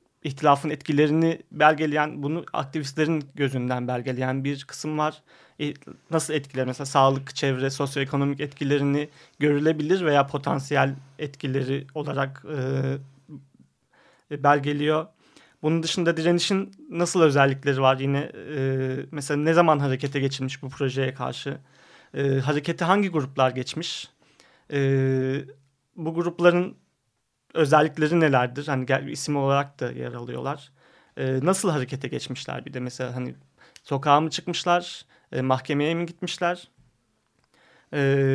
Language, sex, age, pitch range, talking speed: Turkish, male, 30-49, 135-155 Hz, 110 wpm